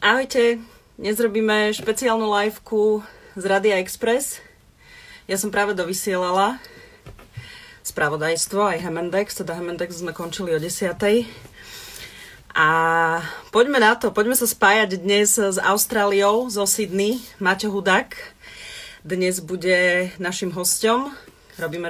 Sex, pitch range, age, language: female, 170-215 Hz, 30-49, Slovak